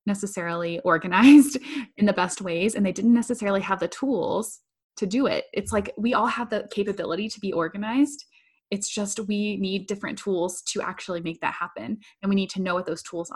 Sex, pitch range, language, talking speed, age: female, 180-225 Hz, English, 200 wpm, 20-39